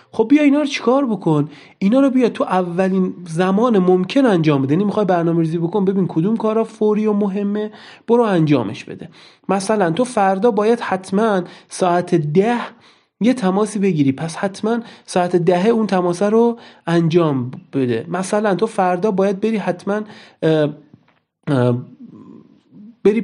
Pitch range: 160-215 Hz